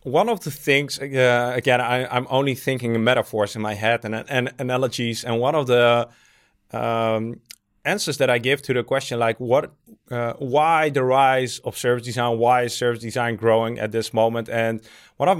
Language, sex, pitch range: English, male, 115-130 Hz